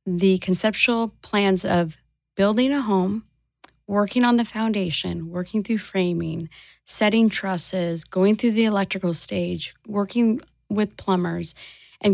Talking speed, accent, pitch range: 125 wpm, American, 185-210 Hz